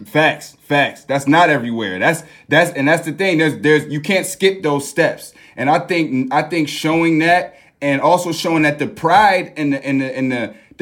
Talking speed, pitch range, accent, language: 200 wpm, 150-200 Hz, American, English